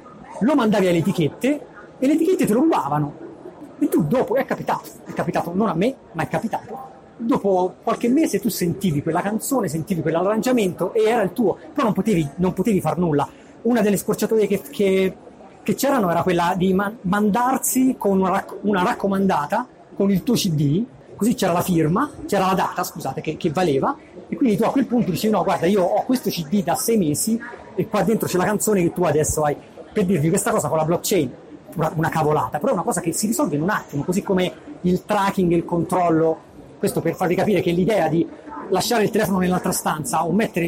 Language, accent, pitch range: Italian, native, 165-220 Hz